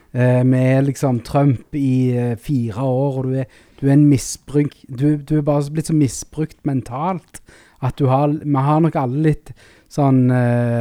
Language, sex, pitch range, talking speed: English, male, 125-140 Hz, 160 wpm